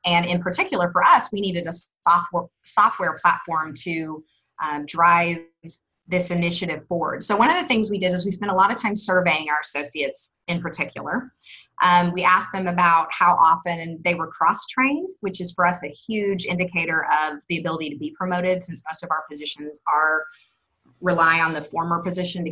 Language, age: English, 30-49